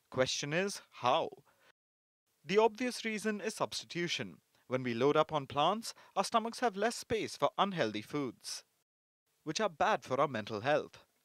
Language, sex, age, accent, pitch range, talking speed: English, male, 30-49, Indian, 130-195 Hz, 160 wpm